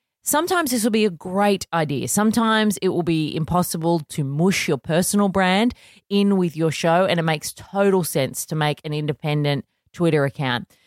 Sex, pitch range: female, 150-190 Hz